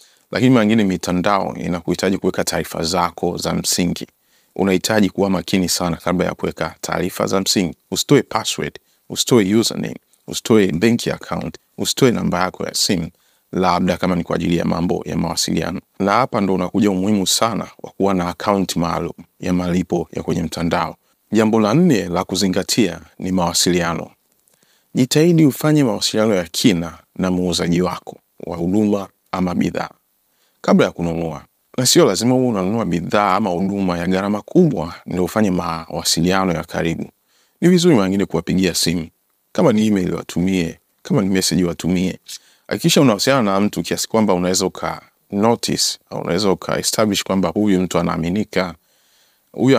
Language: Swahili